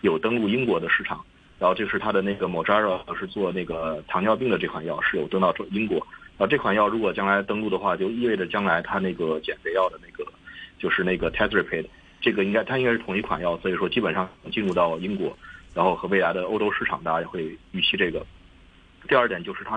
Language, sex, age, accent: Chinese, male, 30-49, native